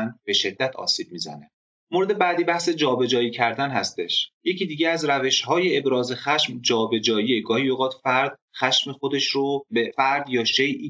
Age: 30-49